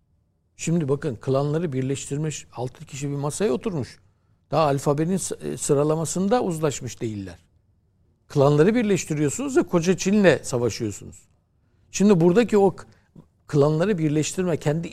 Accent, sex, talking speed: native, male, 105 wpm